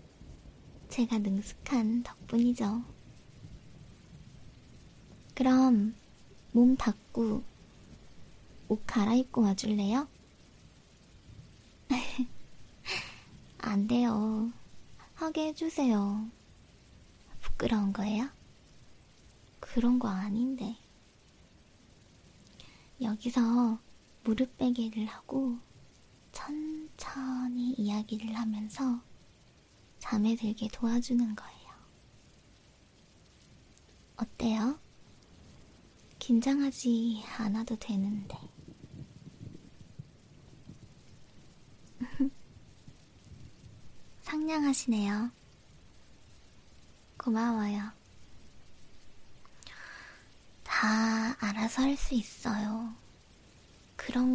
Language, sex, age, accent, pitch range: Korean, male, 20-39, native, 220-250 Hz